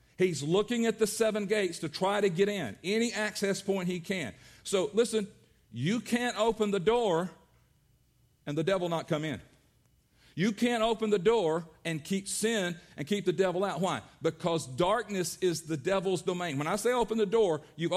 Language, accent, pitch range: English, American, 165-205 Hz